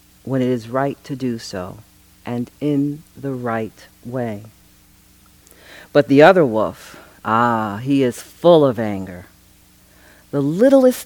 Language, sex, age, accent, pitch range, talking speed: English, female, 50-69, American, 105-145 Hz, 130 wpm